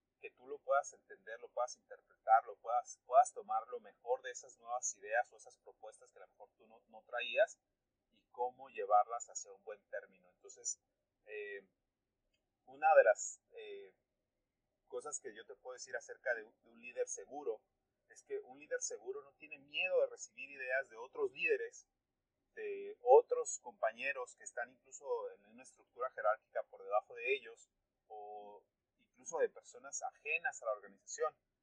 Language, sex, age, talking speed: Spanish, male, 30-49, 170 wpm